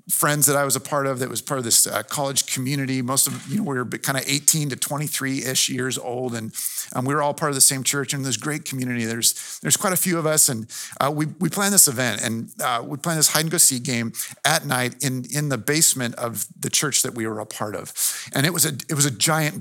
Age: 50-69